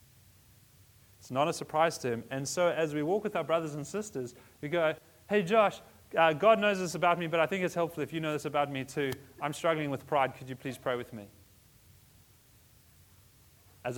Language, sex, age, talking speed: English, male, 30-49, 210 wpm